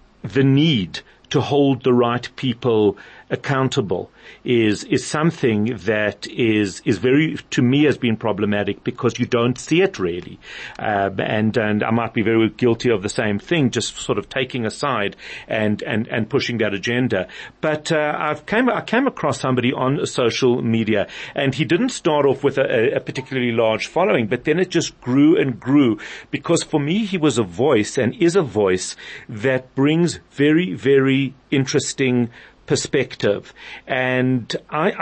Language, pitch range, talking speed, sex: English, 115-145 Hz, 165 wpm, male